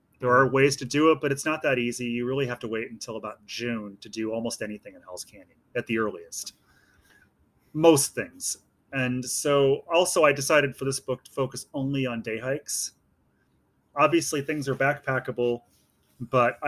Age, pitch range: 30-49, 120-140 Hz